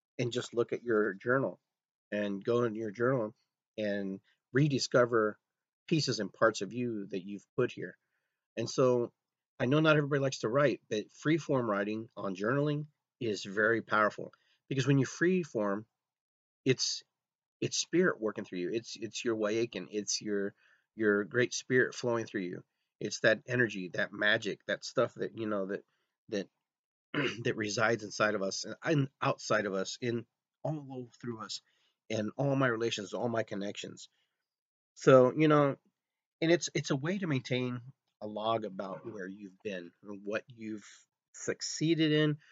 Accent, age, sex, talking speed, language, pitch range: American, 30-49, male, 160 wpm, English, 105-135 Hz